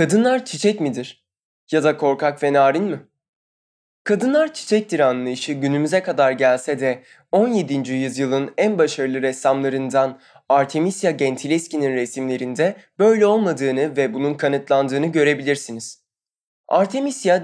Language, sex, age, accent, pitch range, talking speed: Turkish, male, 20-39, native, 135-165 Hz, 105 wpm